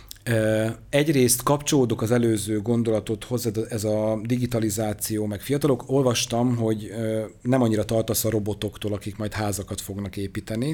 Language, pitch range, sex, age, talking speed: Hungarian, 105-125 Hz, male, 30-49, 130 wpm